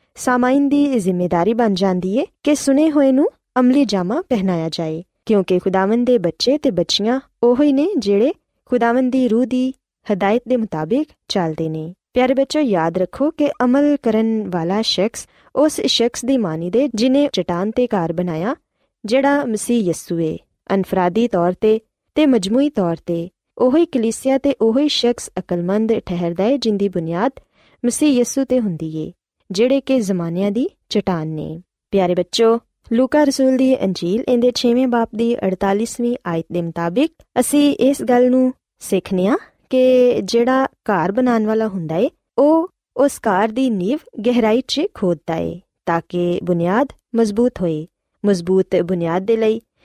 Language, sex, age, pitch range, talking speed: Punjabi, female, 20-39, 185-260 Hz, 150 wpm